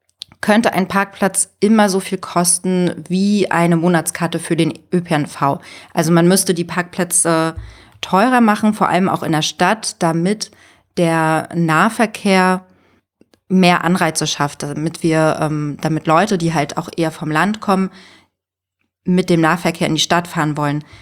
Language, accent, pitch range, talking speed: German, German, 160-195 Hz, 145 wpm